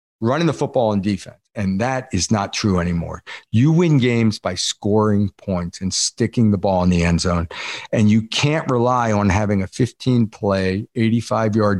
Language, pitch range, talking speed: English, 95-125 Hz, 175 wpm